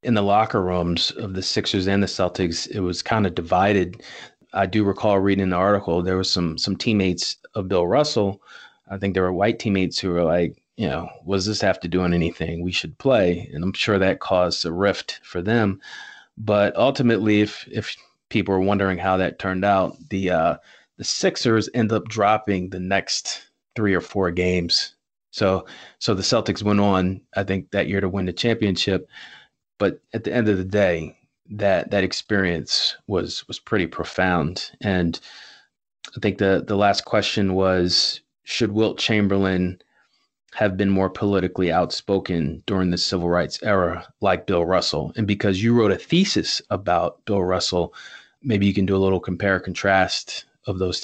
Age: 30-49